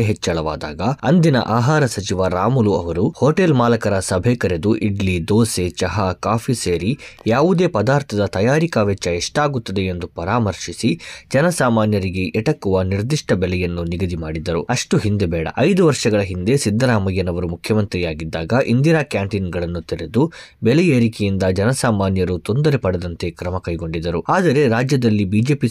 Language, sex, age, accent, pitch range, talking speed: Kannada, male, 20-39, native, 90-115 Hz, 110 wpm